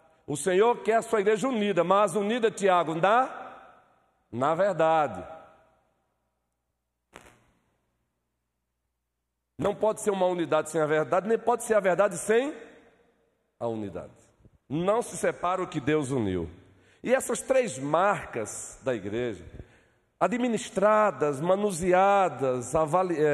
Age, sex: 50-69, male